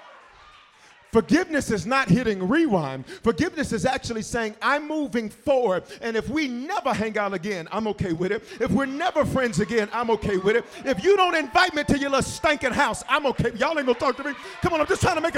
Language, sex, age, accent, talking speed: English, male, 40-59, American, 225 wpm